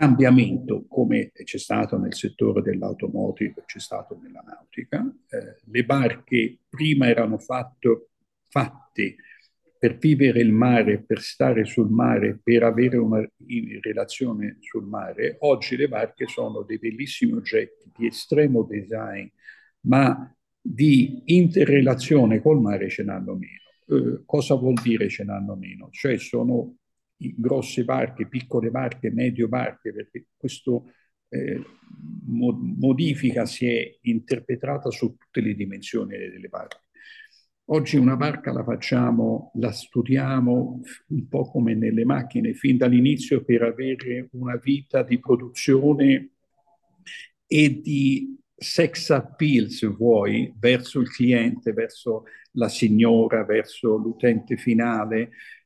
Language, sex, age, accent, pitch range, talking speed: Italian, male, 50-69, native, 115-145 Hz, 120 wpm